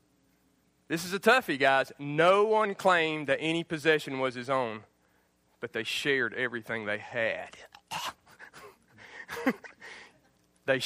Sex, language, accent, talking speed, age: male, English, American, 115 wpm, 40-59